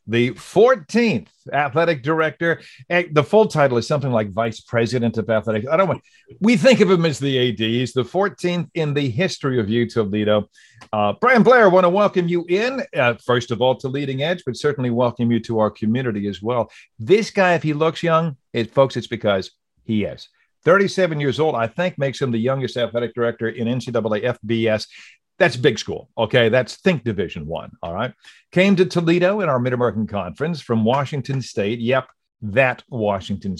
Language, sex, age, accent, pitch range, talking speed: English, male, 50-69, American, 115-165 Hz, 190 wpm